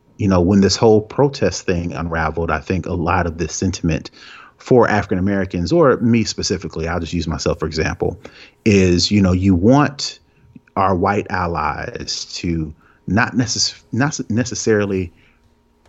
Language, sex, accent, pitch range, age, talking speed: English, male, American, 85-110 Hz, 30-49, 150 wpm